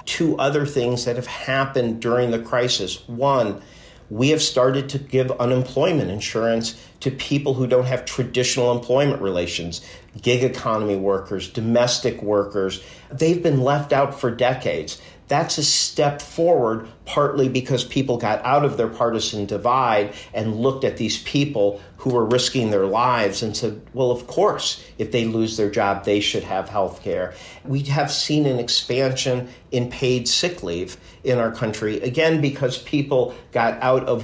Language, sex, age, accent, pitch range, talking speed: English, male, 50-69, American, 110-140 Hz, 160 wpm